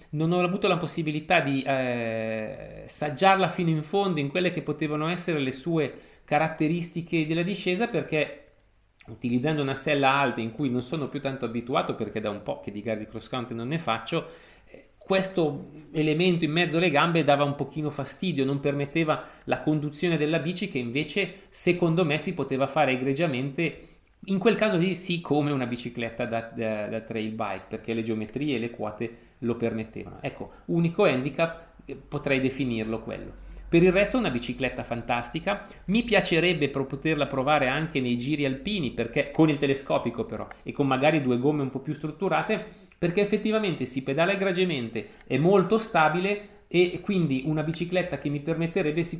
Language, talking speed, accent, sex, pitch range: Italian, 170 wpm, native, male, 130-170 Hz